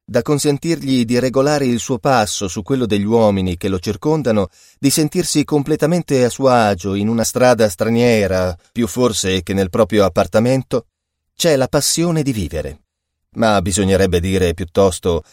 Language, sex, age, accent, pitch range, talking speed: Italian, male, 30-49, native, 100-140 Hz, 155 wpm